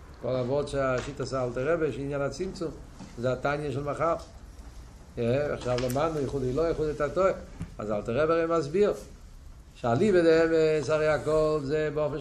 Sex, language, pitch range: male, Hebrew, 120-150 Hz